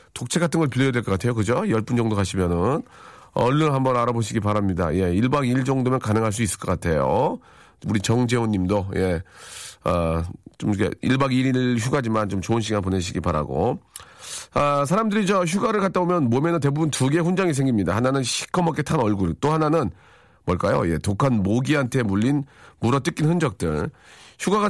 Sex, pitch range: male, 115-170 Hz